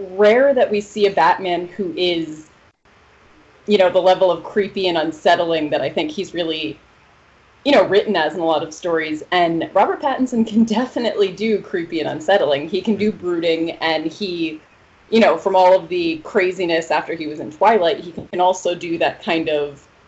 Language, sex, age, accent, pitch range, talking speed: English, female, 30-49, American, 160-200 Hz, 190 wpm